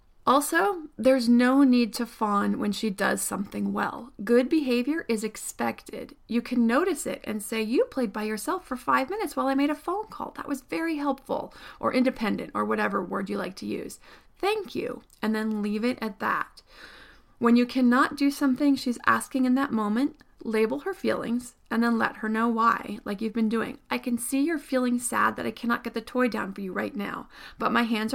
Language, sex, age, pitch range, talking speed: English, female, 30-49, 220-275 Hz, 210 wpm